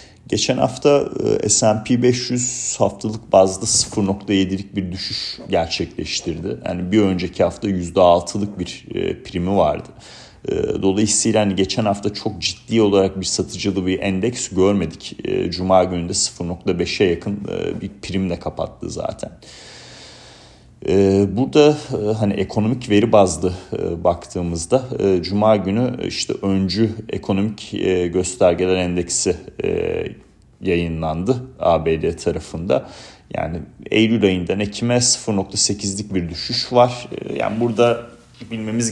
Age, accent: 40-59, native